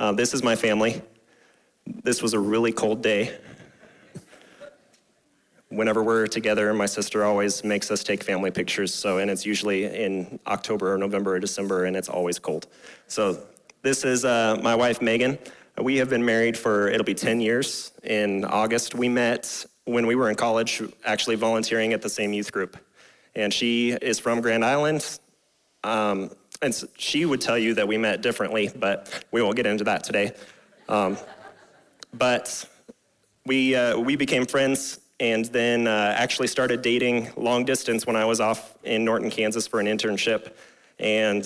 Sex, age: male, 30-49